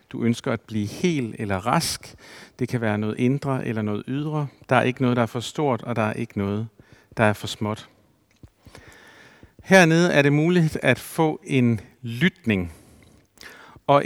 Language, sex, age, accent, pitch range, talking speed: Danish, male, 50-69, native, 115-155 Hz, 175 wpm